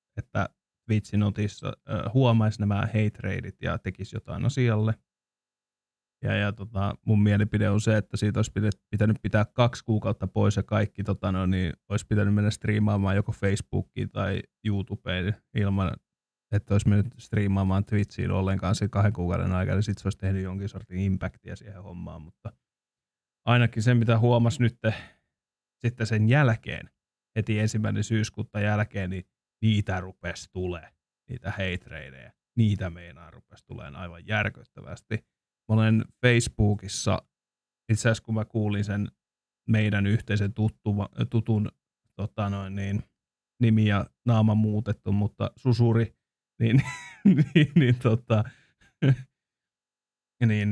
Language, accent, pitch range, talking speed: Finnish, native, 100-115 Hz, 130 wpm